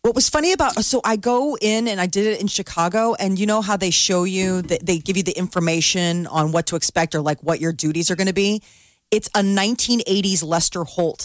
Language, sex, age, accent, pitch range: Japanese, female, 30-49, American, 155-195 Hz